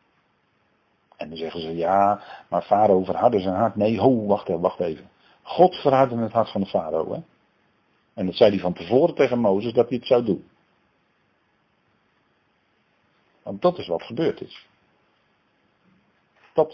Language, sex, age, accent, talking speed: Dutch, male, 50-69, Dutch, 155 wpm